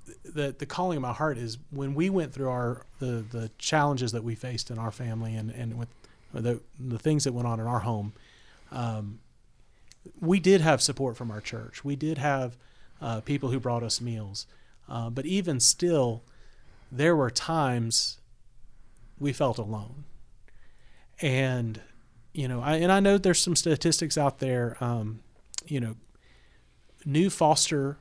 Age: 40-59